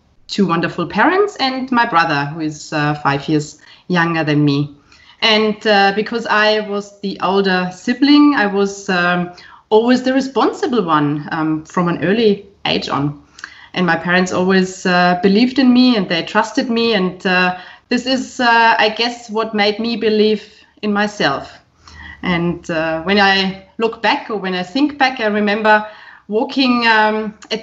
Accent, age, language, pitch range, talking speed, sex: German, 20-39, English, 180-240 Hz, 165 wpm, female